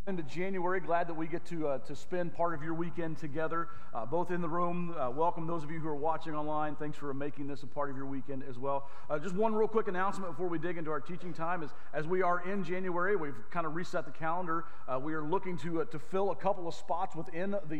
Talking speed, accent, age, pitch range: 265 wpm, American, 40-59, 140-175 Hz